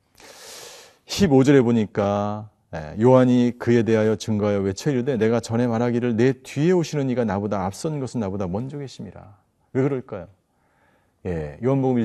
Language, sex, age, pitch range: Korean, male, 40-59, 110-145 Hz